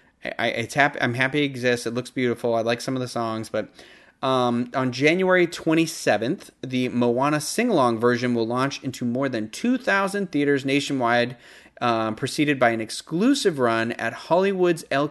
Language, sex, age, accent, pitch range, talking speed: English, male, 30-49, American, 115-155 Hz, 170 wpm